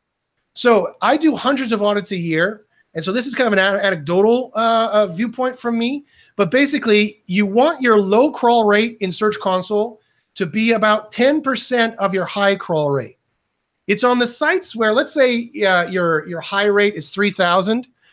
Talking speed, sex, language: 180 wpm, male, English